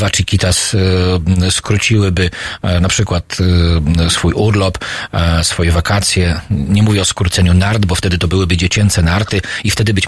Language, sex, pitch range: Polish, male, 90-125 Hz